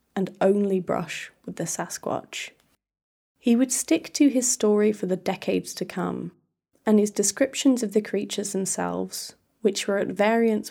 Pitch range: 190-230 Hz